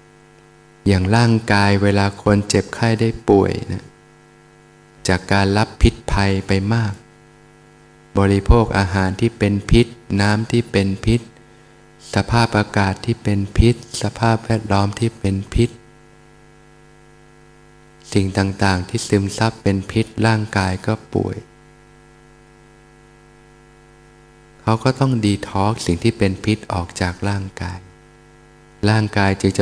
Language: Thai